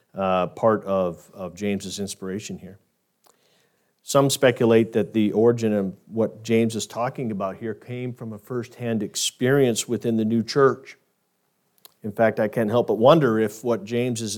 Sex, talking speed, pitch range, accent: male, 165 wpm, 115-185 Hz, American